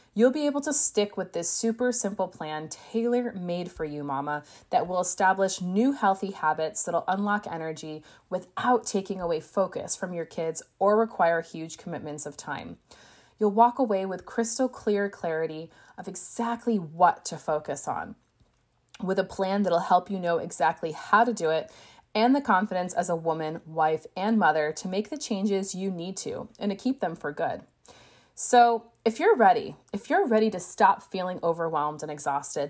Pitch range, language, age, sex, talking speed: 160-215 Hz, English, 20-39, female, 175 wpm